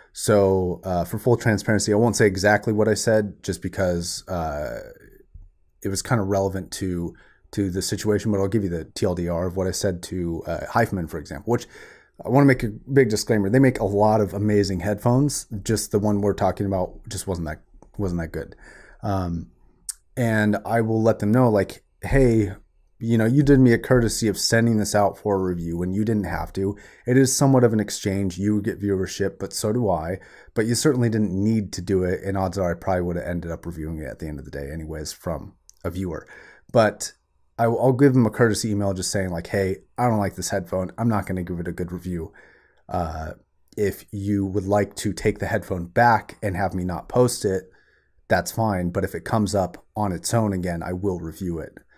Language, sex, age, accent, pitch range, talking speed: English, male, 30-49, American, 90-110 Hz, 225 wpm